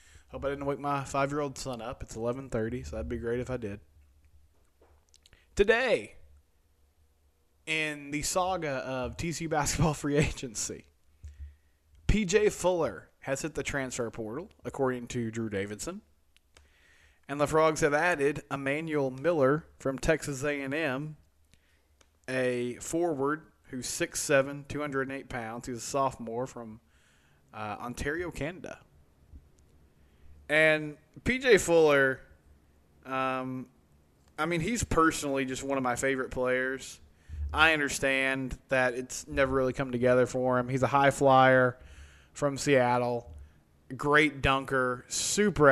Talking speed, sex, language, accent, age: 120 wpm, male, English, American, 30-49